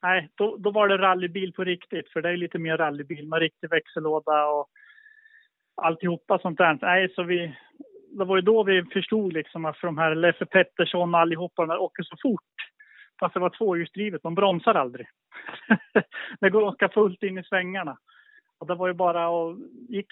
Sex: male